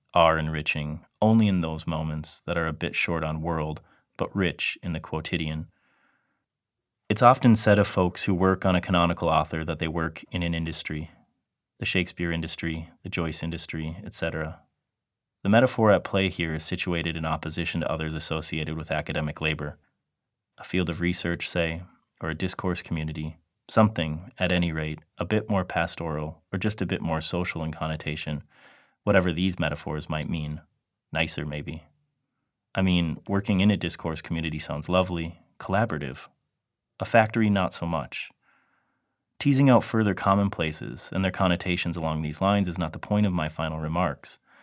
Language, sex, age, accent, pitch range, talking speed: English, male, 30-49, American, 80-95 Hz, 165 wpm